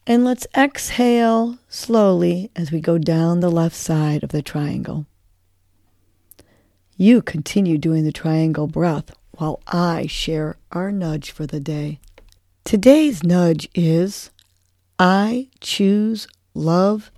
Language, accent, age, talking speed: English, American, 50-69, 120 wpm